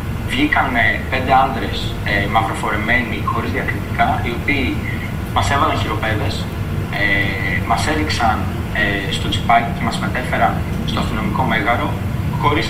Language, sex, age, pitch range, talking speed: Greek, male, 20-39, 100-115 Hz, 120 wpm